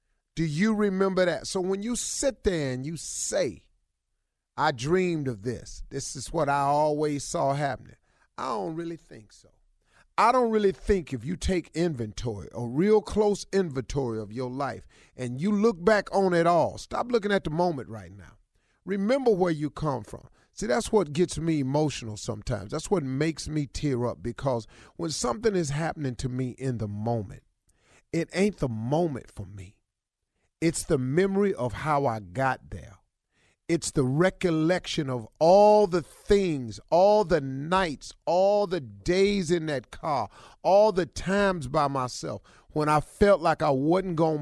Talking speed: 170 wpm